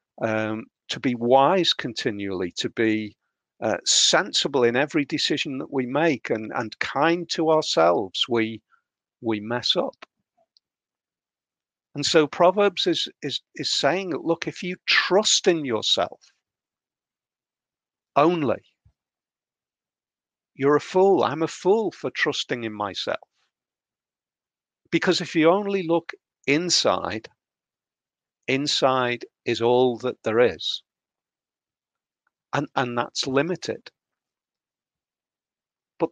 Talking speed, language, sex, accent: 110 wpm, English, male, British